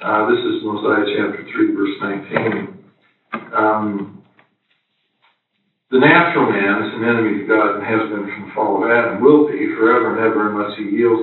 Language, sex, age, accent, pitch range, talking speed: English, male, 50-69, American, 110-150 Hz, 175 wpm